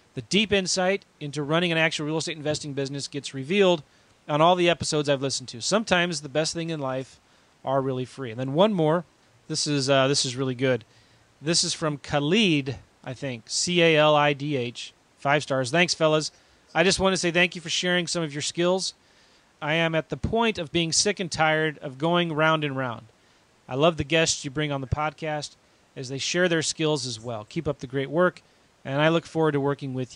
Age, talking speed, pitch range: 30-49, 215 wpm, 135-175 Hz